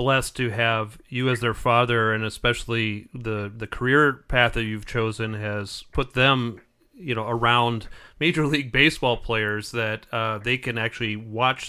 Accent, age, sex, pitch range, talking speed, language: American, 40-59, male, 110-125 Hz, 165 wpm, English